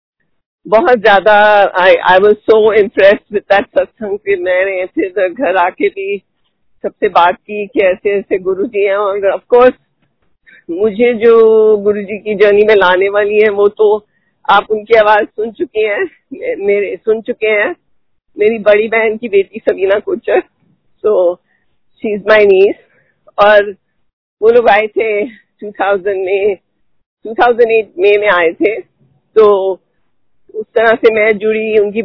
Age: 50-69